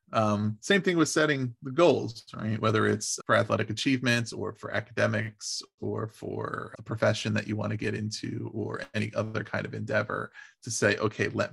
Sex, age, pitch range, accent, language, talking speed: male, 20-39, 100-115 Hz, American, English, 185 wpm